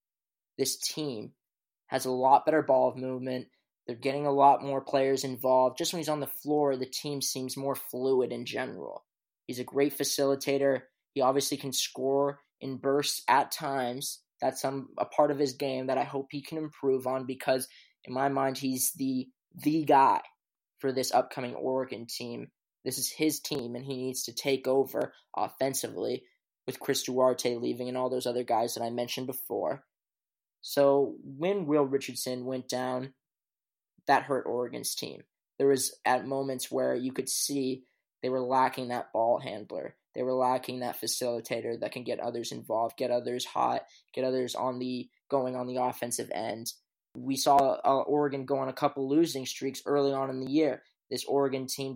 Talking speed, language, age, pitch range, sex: 180 wpm, English, 20-39, 125-140 Hz, male